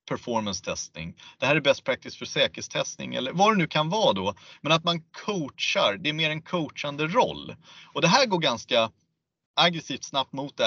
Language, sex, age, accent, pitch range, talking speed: Swedish, male, 30-49, native, 120-175 Hz, 190 wpm